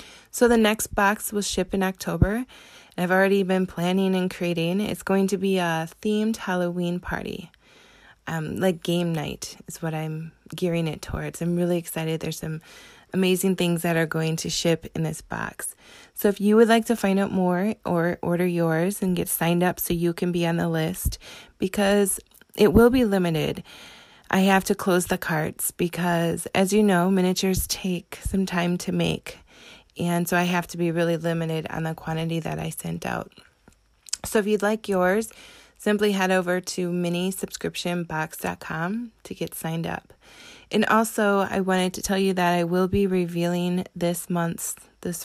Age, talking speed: 20-39, 180 wpm